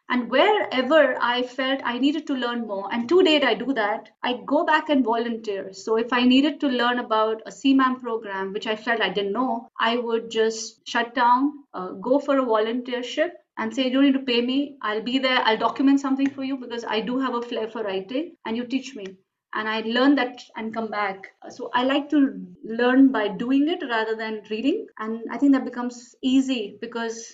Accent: Indian